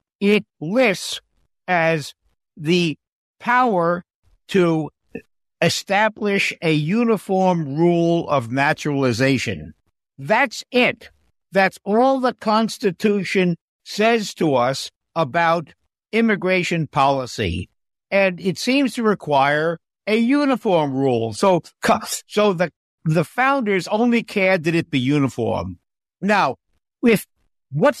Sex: male